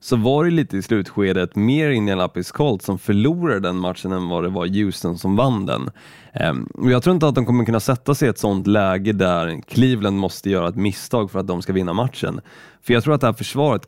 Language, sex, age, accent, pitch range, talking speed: Swedish, male, 20-39, native, 95-125 Hz, 230 wpm